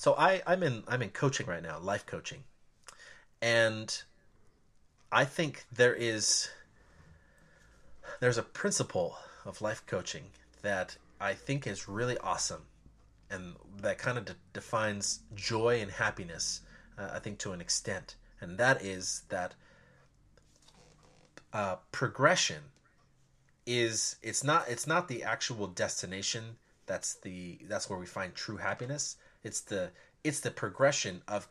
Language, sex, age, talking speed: English, male, 30-49, 135 wpm